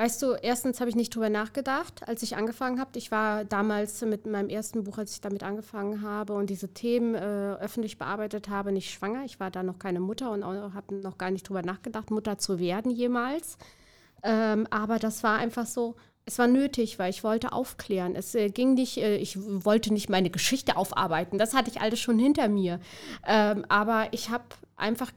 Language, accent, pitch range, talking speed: German, German, 205-240 Hz, 205 wpm